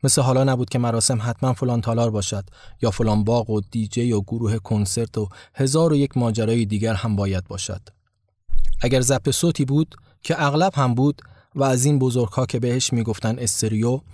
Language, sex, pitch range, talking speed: Persian, male, 105-135 Hz, 180 wpm